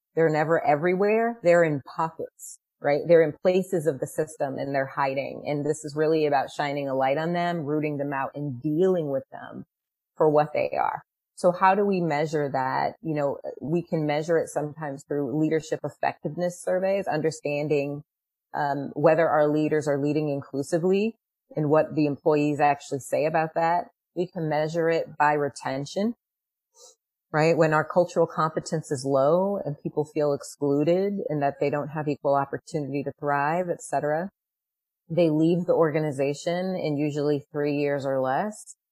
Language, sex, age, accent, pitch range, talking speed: English, female, 30-49, American, 145-175 Hz, 165 wpm